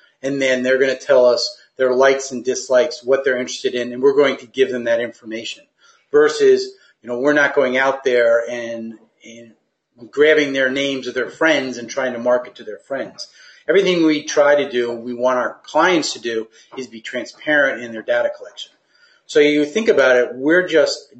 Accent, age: American, 40-59